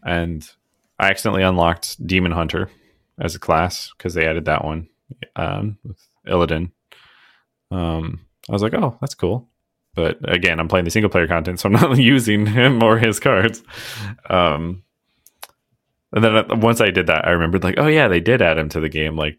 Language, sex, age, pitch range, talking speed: English, male, 20-39, 80-105 Hz, 180 wpm